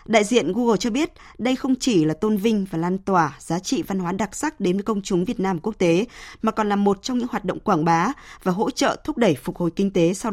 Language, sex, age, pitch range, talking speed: Vietnamese, female, 20-39, 175-225 Hz, 280 wpm